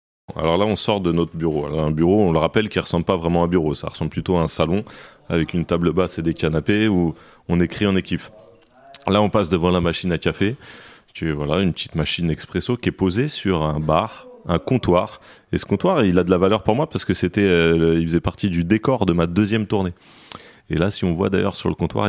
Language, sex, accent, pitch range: French, male, French, 80-95 Hz